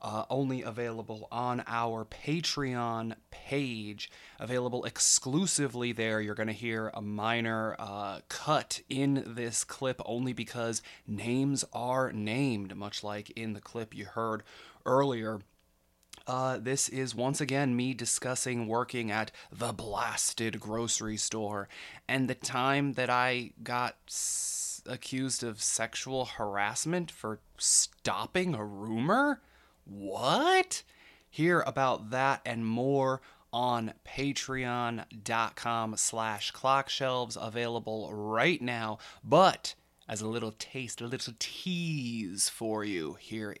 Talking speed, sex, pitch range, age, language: 120 wpm, male, 110-130 Hz, 20-39, English